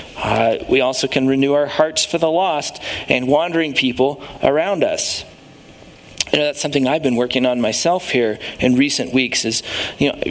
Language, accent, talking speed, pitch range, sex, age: English, American, 180 wpm, 135-195 Hz, male, 40-59